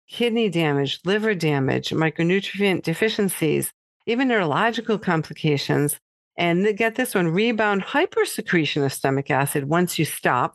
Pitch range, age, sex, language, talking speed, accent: 150-195 Hz, 50-69, female, English, 120 wpm, American